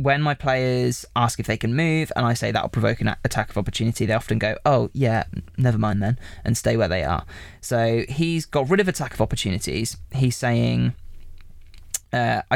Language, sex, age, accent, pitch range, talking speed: English, male, 20-39, British, 100-130 Hz, 200 wpm